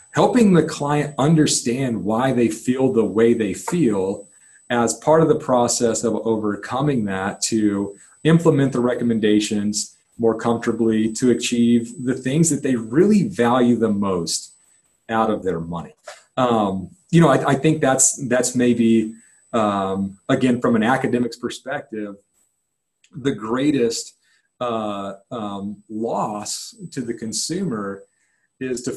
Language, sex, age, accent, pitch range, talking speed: English, male, 40-59, American, 105-135 Hz, 135 wpm